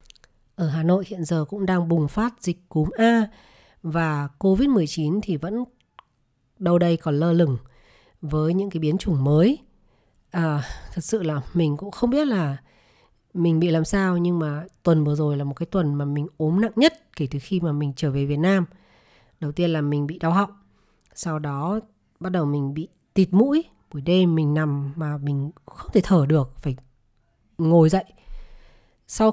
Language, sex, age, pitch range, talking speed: Vietnamese, female, 20-39, 150-195 Hz, 185 wpm